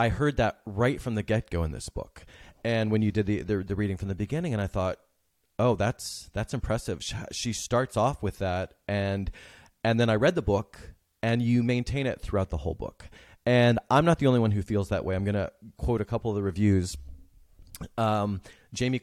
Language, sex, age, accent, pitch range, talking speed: English, male, 30-49, American, 100-120 Hz, 220 wpm